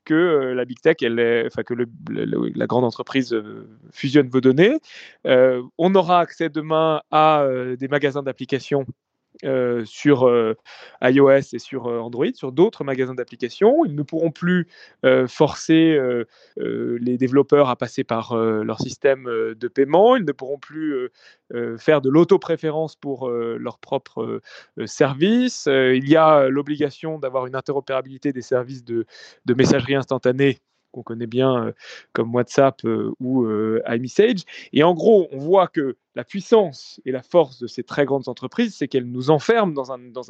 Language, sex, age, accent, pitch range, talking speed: French, male, 30-49, French, 125-160 Hz, 170 wpm